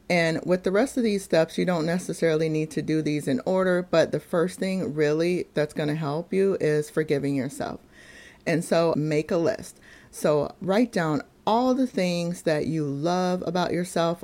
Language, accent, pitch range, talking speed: English, American, 145-180 Hz, 190 wpm